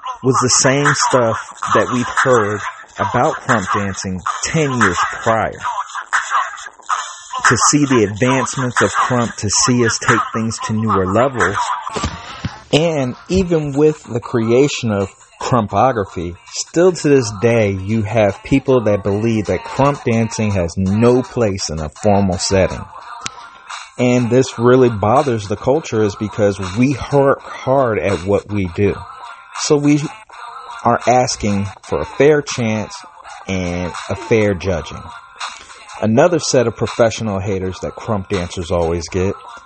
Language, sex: English, male